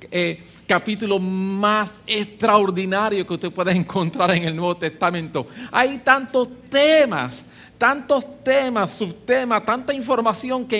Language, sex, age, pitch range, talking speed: English, male, 50-69, 190-260 Hz, 115 wpm